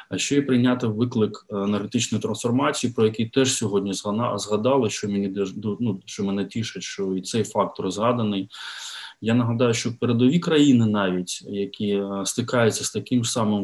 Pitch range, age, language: 95-120 Hz, 20-39, Ukrainian